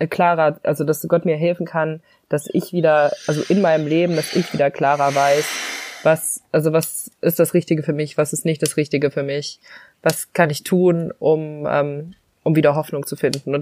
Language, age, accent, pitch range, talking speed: German, 20-39, German, 140-160 Hz, 200 wpm